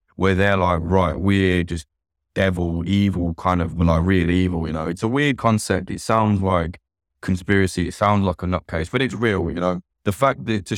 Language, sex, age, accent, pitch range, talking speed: English, male, 20-39, British, 85-105 Hz, 205 wpm